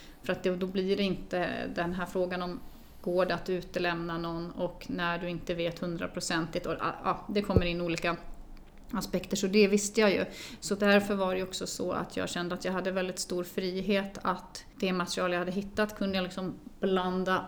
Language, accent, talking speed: Swedish, native, 195 wpm